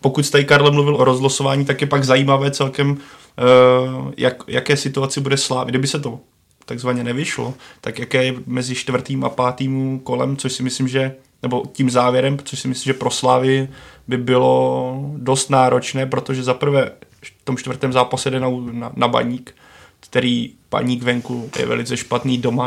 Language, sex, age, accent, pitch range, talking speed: Czech, male, 20-39, native, 125-135 Hz, 165 wpm